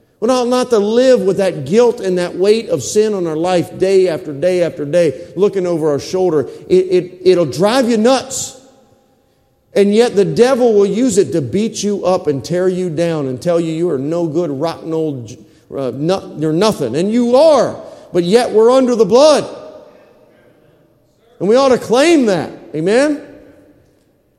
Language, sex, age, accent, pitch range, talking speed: English, male, 40-59, American, 140-200 Hz, 180 wpm